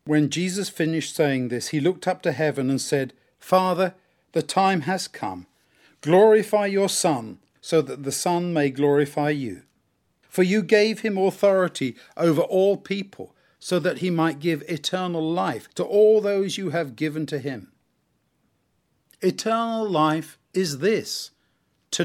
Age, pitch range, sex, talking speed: 50-69, 150-190 Hz, male, 150 wpm